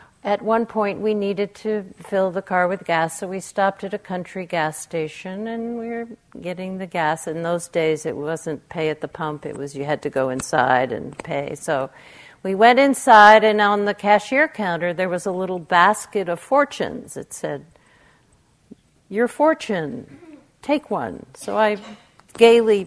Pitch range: 180-240 Hz